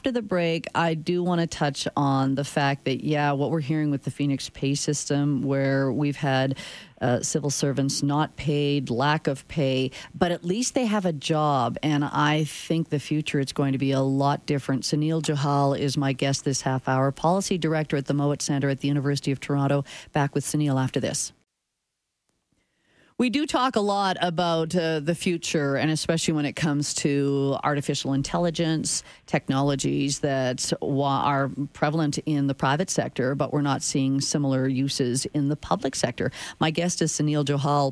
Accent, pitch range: American, 140-165 Hz